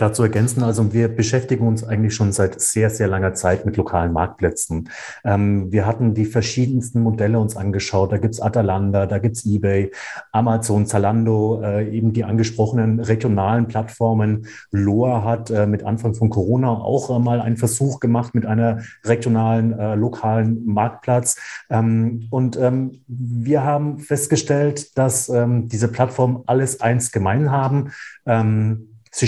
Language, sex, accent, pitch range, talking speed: German, male, German, 110-125 Hz, 155 wpm